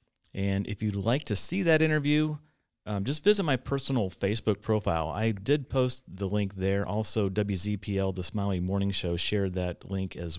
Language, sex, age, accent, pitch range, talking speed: English, male, 40-59, American, 95-120 Hz, 180 wpm